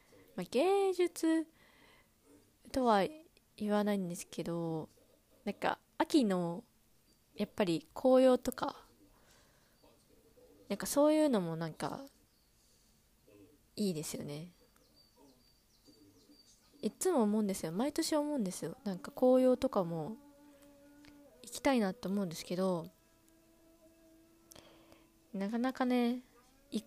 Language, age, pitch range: Japanese, 20-39, 185-255 Hz